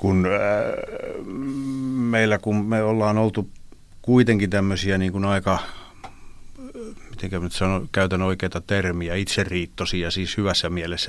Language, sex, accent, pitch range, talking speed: Finnish, male, native, 90-110 Hz, 115 wpm